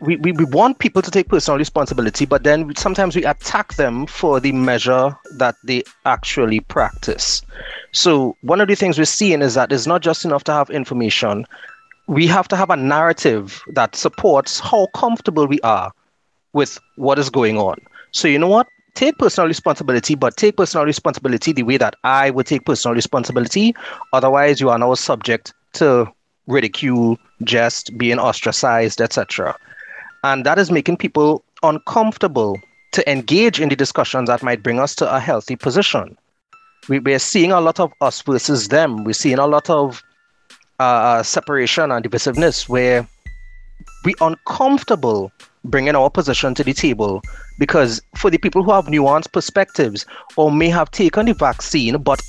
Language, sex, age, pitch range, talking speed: English, male, 30-49, 130-185 Hz, 165 wpm